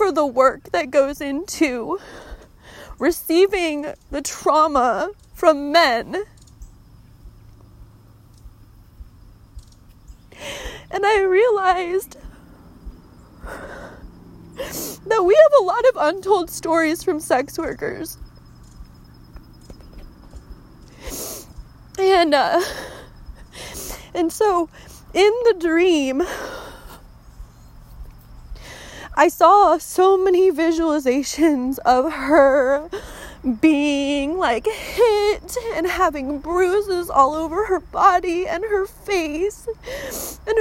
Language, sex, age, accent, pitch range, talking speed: English, female, 20-39, American, 285-395 Hz, 75 wpm